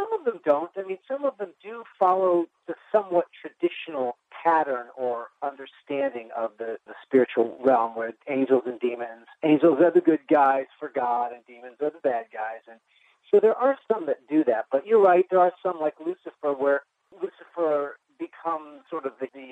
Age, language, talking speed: 40-59, English, 190 wpm